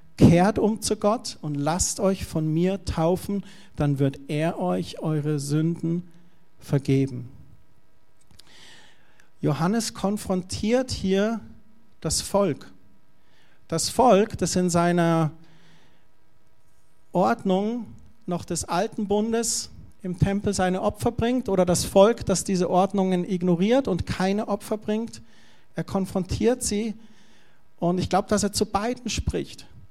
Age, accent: 40-59, German